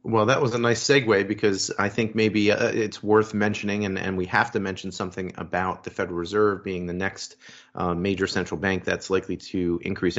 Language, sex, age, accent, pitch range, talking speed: English, male, 30-49, American, 95-110 Hz, 210 wpm